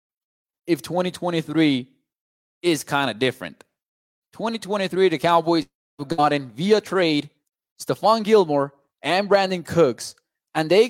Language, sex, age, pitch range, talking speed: English, male, 20-39, 135-180 Hz, 110 wpm